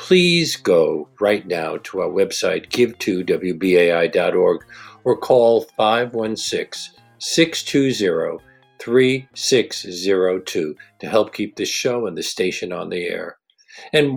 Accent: American